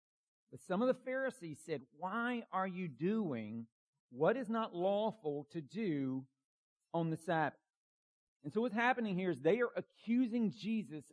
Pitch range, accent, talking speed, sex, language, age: 155-200 Hz, American, 155 wpm, male, English, 50-69